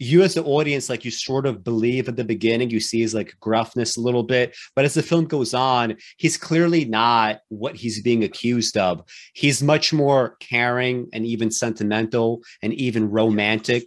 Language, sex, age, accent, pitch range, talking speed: English, male, 30-49, American, 115-135 Hz, 190 wpm